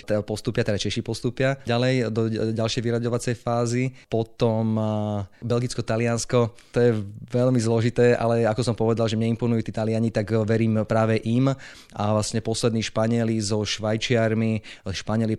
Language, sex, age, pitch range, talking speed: Slovak, male, 20-39, 110-120 Hz, 135 wpm